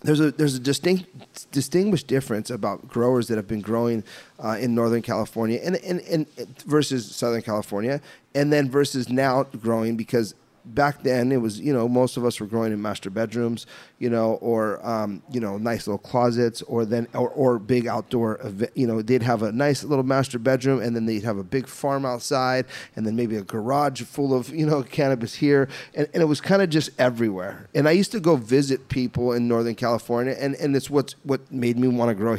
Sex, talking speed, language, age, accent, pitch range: male, 215 wpm, English, 30-49, American, 115-145 Hz